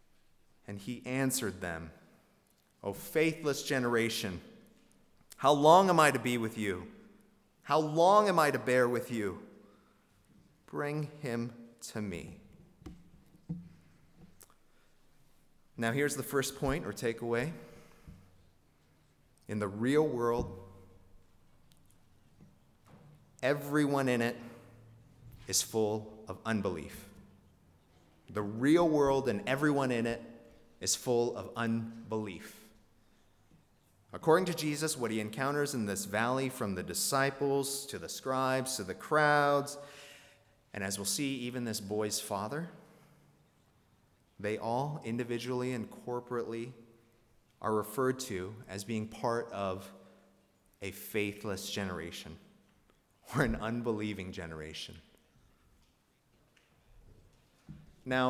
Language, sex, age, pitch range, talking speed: English, male, 30-49, 105-140 Hz, 105 wpm